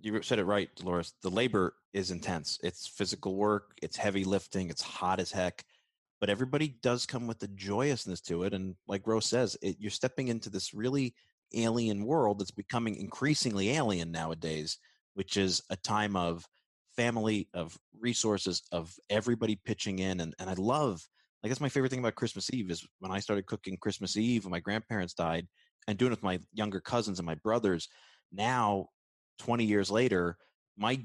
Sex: male